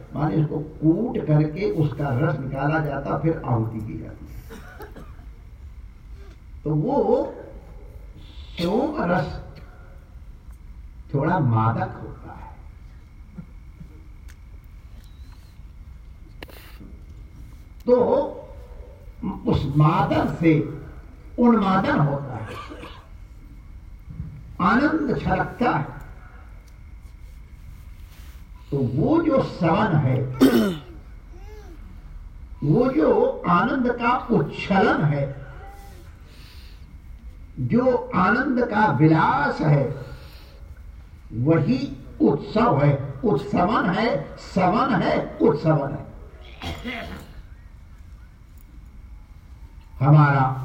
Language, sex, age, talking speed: Hindi, male, 60-79, 65 wpm